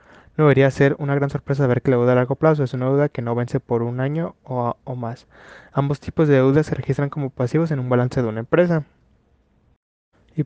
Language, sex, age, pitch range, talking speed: Spanish, male, 20-39, 125-145 Hz, 230 wpm